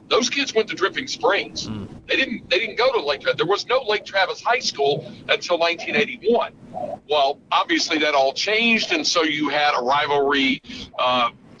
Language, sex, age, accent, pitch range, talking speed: English, male, 50-69, American, 140-235 Hz, 180 wpm